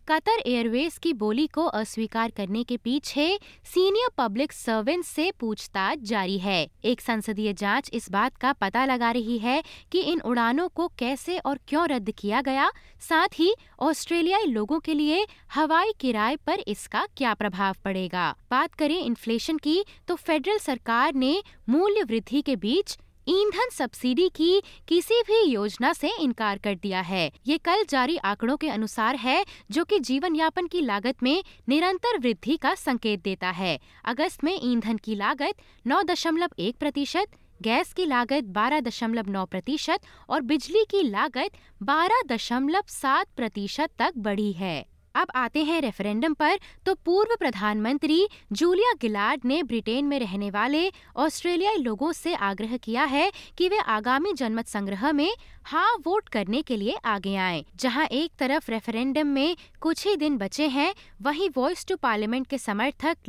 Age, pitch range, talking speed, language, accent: 20-39, 225-335 Hz, 155 wpm, Hindi, native